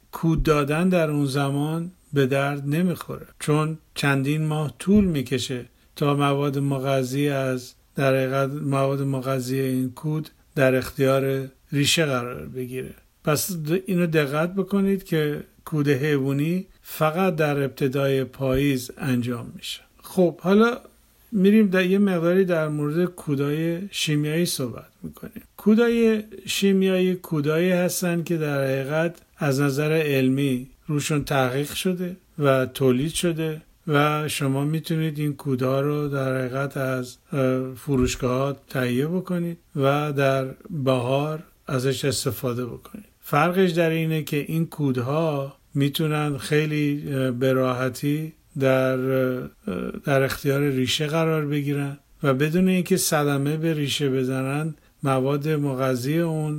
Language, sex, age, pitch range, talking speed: Persian, male, 50-69, 135-160 Hz, 120 wpm